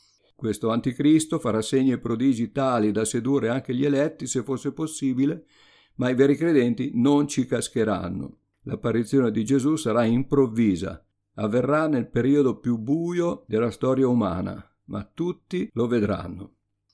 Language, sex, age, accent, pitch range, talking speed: Italian, male, 50-69, native, 105-130 Hz, 140 wpm